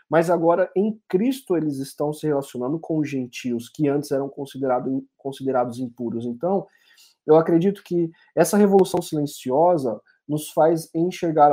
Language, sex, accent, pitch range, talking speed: Portuguese, male, Brazilian, 135-180 Hz, 140 wpm